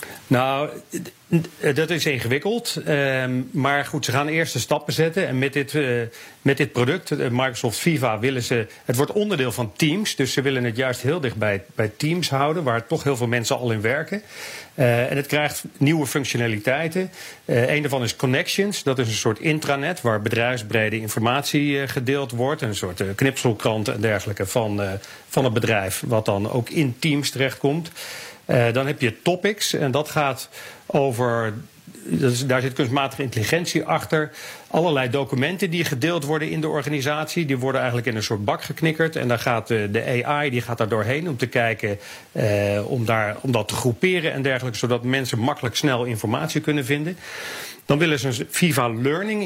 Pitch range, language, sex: 120-155 Hz, English, male